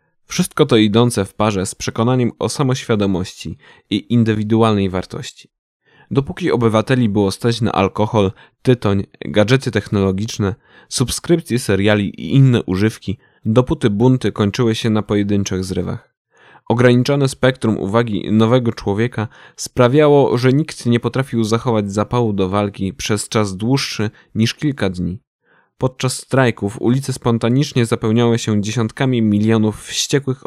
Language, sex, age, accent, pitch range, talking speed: Polish, male, 10-29, native, 105-125 Hz, 120 wpm